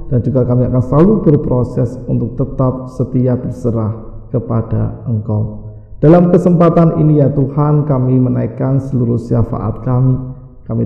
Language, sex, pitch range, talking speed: Indonesian, male, 125-140 Hz, 125 wpm